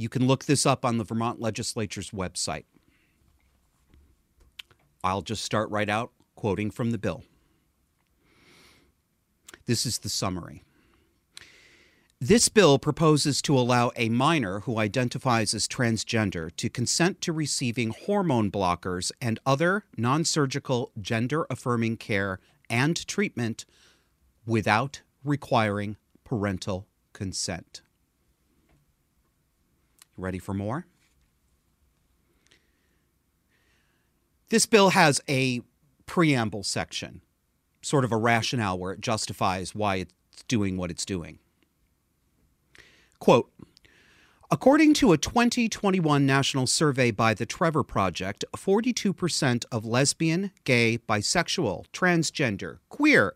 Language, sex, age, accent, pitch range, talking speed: English, male, 40-59, American, 95-140 Hz, 100 wpm